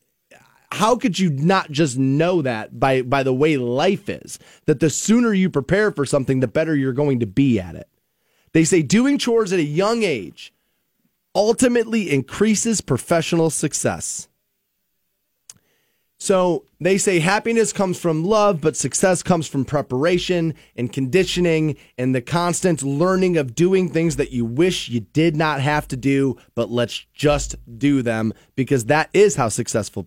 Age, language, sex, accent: 30-49, English, male, American